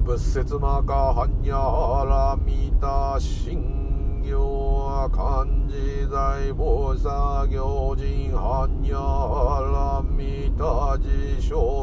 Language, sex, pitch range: Japanese, male, 70-80 Hz